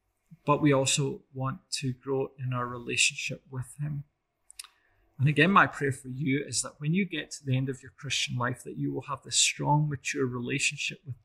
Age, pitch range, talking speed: 30-49, 130-155 Hz, 205 wpm